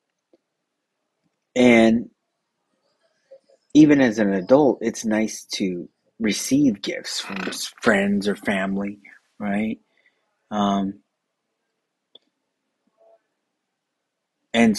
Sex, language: male, English